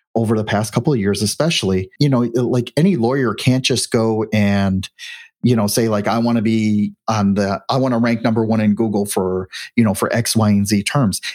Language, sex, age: English, male, 40-59